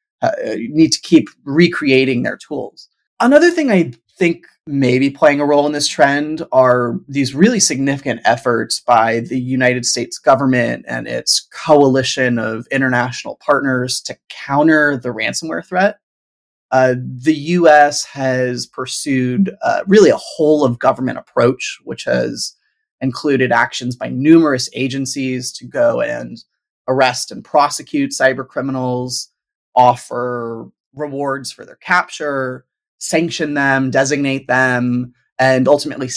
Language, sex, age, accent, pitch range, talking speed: English, male, 30-49, American, 125-150 Hz, 130 wpm